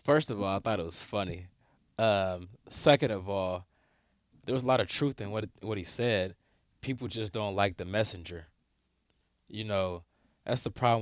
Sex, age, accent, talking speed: male, 20-39, American, 185 wpm